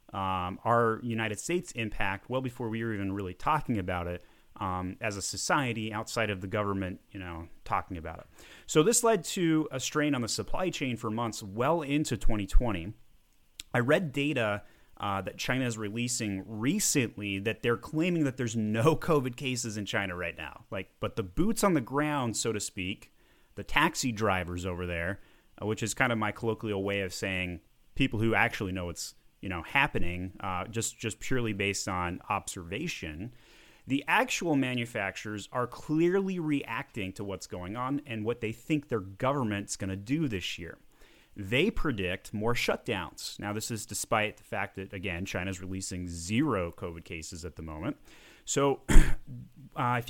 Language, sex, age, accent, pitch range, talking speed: English, male, 30-49, American, 95-130 Hz, 175 wpm